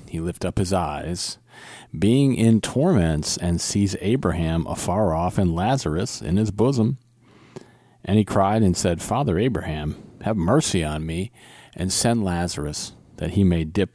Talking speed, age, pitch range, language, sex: 155 wpm, 40-59, 85-105 Hz, English, male